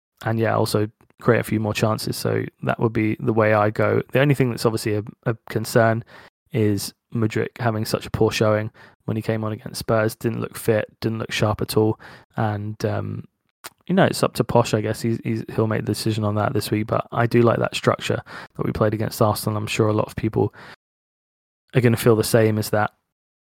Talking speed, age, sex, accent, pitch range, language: 230 wpm, 20-39, male, British, 110-130 Hz, English